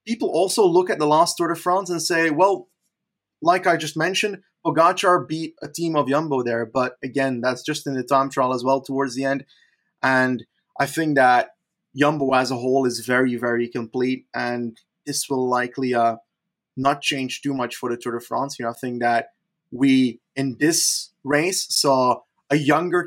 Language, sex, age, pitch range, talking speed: English, male, 20-39, 130-165 Hz, 190 wpm